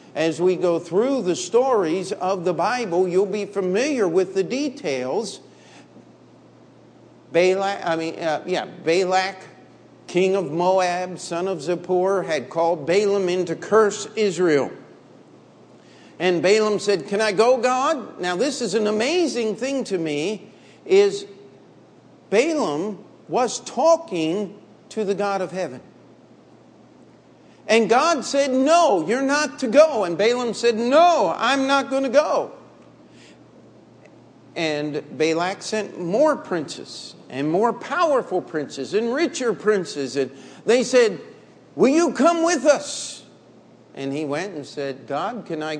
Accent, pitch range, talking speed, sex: American, 170-240 Hz, 135 wpm, male